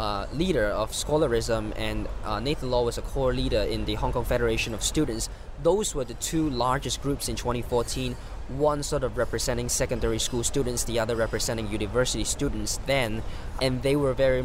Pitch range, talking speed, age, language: 110-135 Hz, 185 wpm, 20-39, English